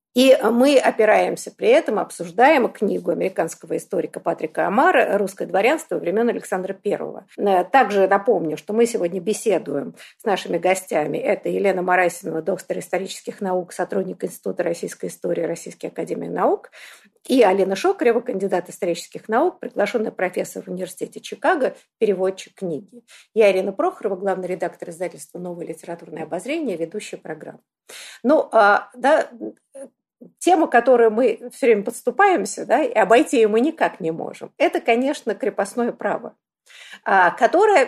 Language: Russian